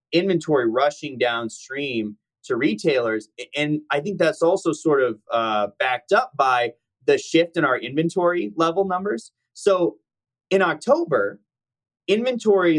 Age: 30-49